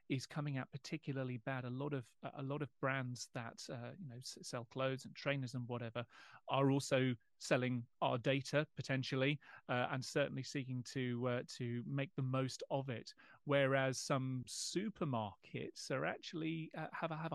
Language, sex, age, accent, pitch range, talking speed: English, male, 30-49, British, 125-150 Hz, 170 wpm